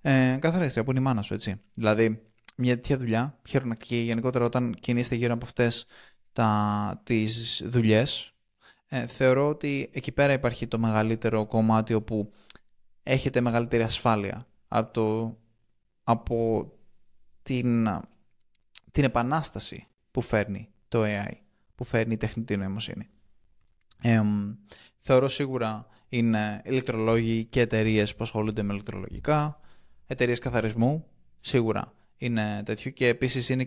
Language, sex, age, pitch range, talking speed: Greek, male, 20-39, 105-125 Hz, 115 wpm